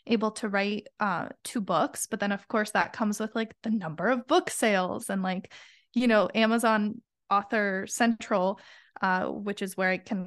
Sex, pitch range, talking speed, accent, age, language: female, 200-235 Hz, 185 wpm, American, 20-39, English